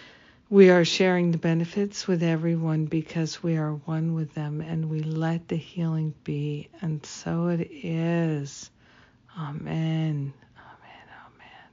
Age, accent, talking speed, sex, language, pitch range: 50-69, American, 135 wpm, female, English, 150-190 Hz